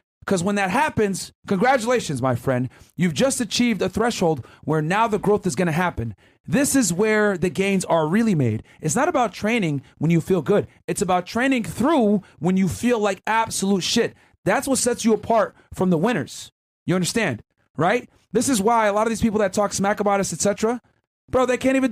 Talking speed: 205 wpm